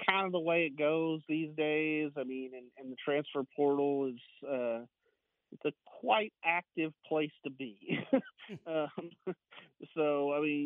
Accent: American